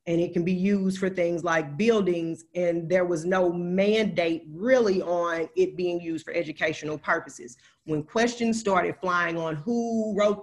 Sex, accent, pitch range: female, American, 165-200 Hz